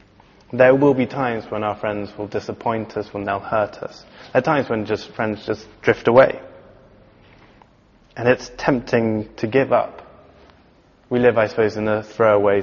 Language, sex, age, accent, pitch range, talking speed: English, male, 20-39, British, 105-120 Hz, 170 wpm